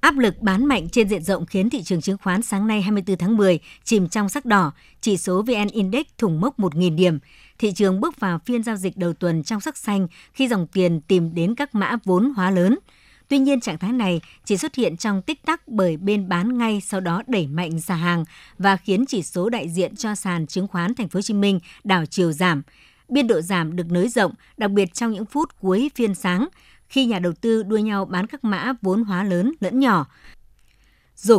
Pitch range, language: 185-230 Hz, Vietnamese